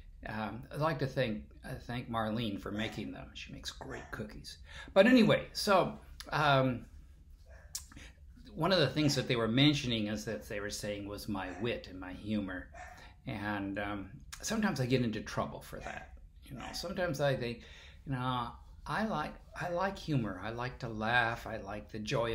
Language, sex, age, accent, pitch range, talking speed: English, male, 50-69, American, 80-130 Hz, 180 wpm